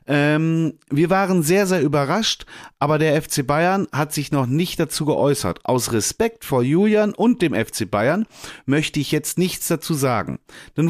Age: 40-59